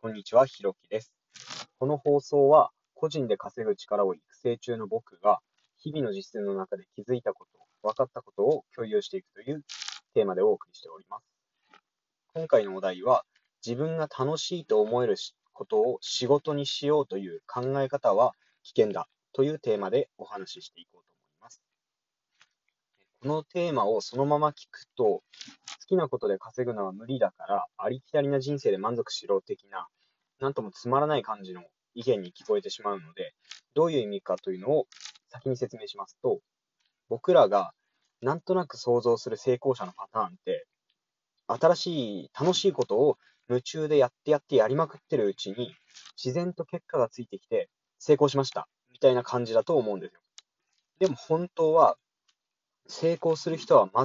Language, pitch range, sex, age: Japanese, 125-195 Hz, male, 20-39